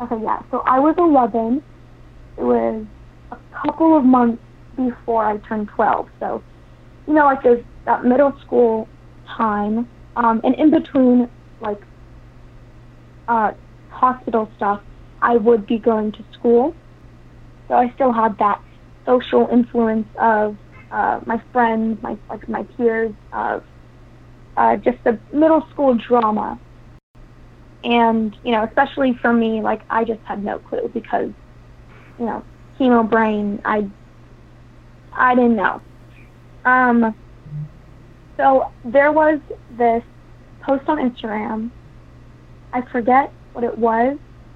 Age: 30-49